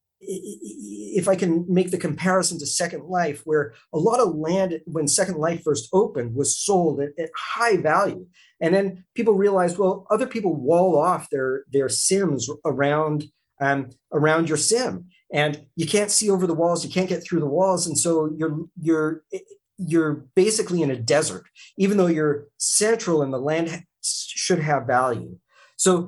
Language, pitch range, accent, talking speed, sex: English, 145-180 Hz, American, 175 wpm, male